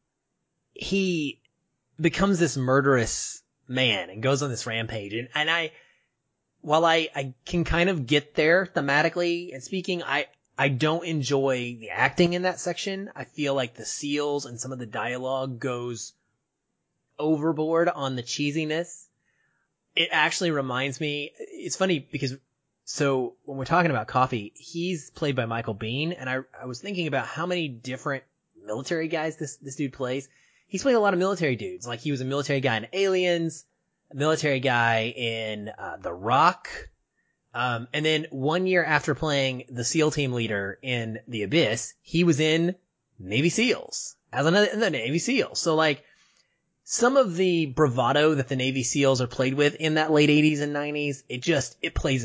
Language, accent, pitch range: English, American, 130-170 Hz